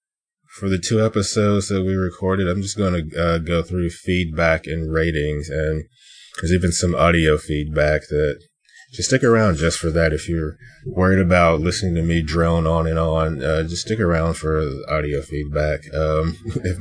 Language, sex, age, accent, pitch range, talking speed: English, male, 20-39, American, 80-95 Hz, 180 wpm